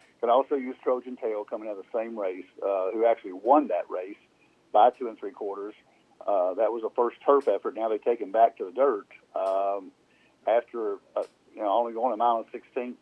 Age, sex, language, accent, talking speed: 50-69, male, English, American, 220 wpm